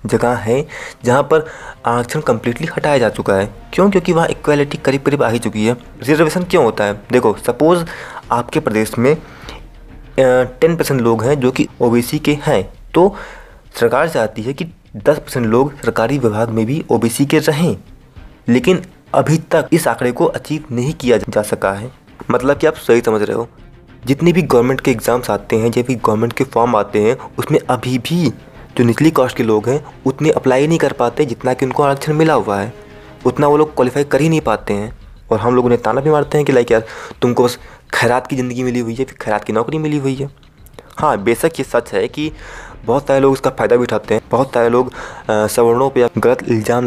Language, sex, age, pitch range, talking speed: Hindi, male, 20-39, 115-150 Hz, 210 wpm